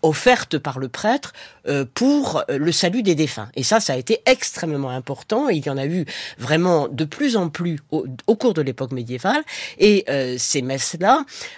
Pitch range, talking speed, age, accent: 125-160 Hz, 175 wpm, 40-59, French